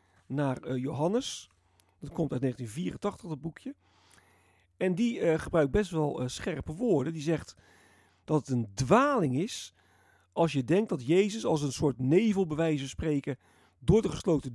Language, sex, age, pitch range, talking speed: Dutch, male, 40-59, 125-190 Hz, 170 wpm